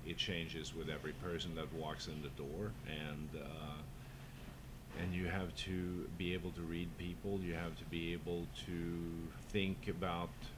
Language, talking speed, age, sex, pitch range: English, 165 wpm, 50-69, male, 75-90 Hz